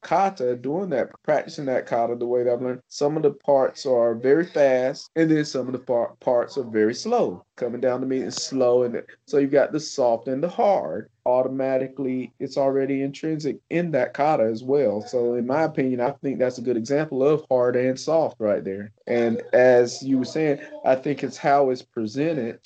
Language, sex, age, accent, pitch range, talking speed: English, male, 30-49, American, 125-140 Hz, 210 wpm